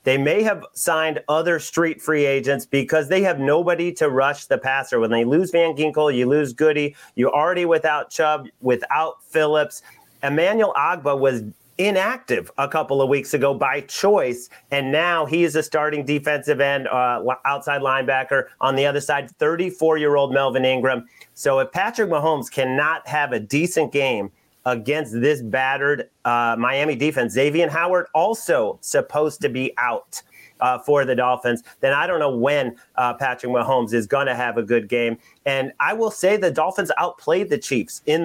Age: 30-49